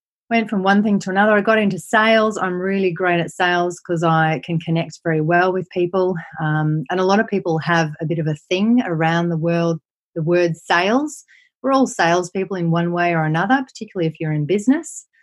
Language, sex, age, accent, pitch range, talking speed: English, female, 30-49, Australian, 160-195 Hz, 215 wpm